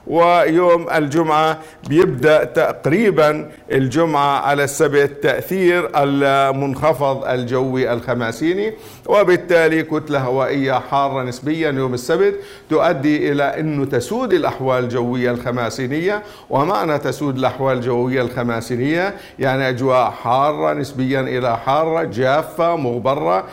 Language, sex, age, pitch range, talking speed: Arabic, male, 50-69, 130-160 Hz, 95 wpm